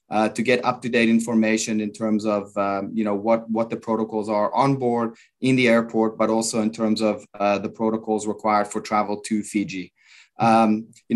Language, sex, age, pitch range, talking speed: English, male, 20-39, 105-115 Hz, 195 wpm